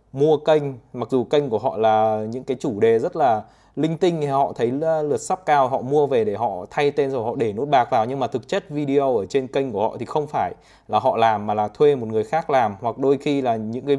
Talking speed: 280 wpm